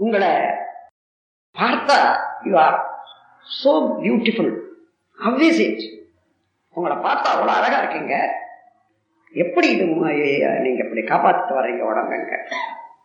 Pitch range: 225-345 Hz